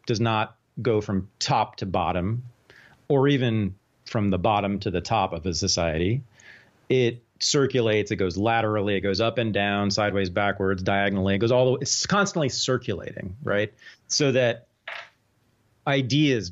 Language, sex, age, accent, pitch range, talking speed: English, male, 30-49, American, 100-130 Hz, 155 wpm